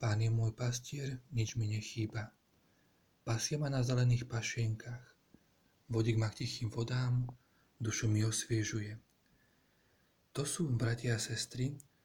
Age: 40-59